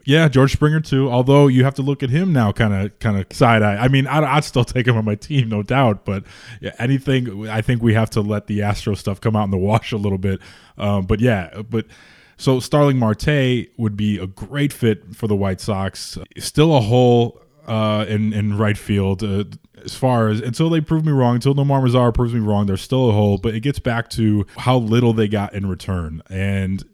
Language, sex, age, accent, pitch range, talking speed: English, male, 20-39, American, 100-125 Hz, 235 wpm